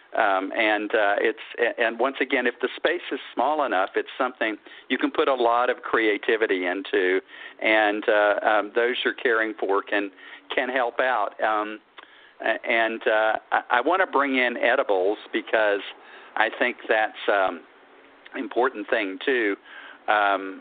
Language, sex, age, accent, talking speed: English, male, 50-69, American, 155 wpm